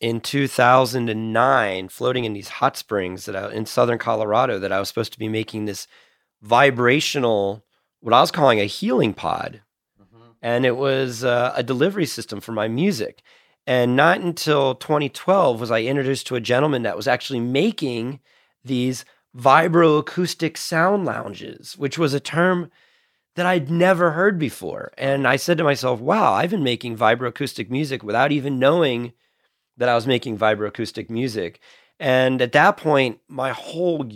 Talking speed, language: 160 wpm, English